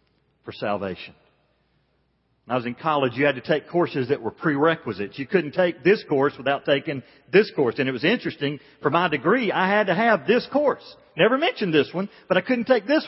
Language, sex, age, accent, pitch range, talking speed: English, male, 40-59, American, 135-200 Hz, 210 wpm